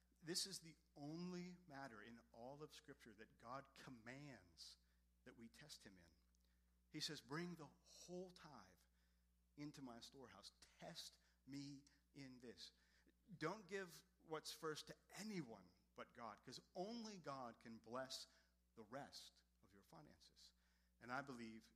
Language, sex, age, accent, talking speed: English, male, 50-69, American, 140 wpm